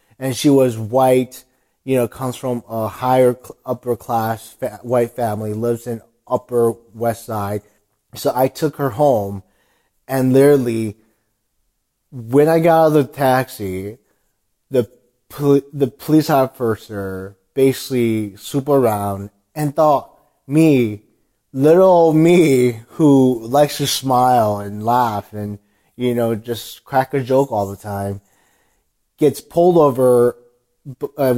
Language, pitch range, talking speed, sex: English, 110-140 Hz, 130 wpm, male